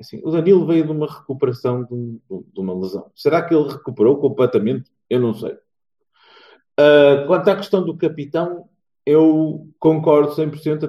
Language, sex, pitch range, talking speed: Portuguese, male, 120-165 Hz, 155 wpm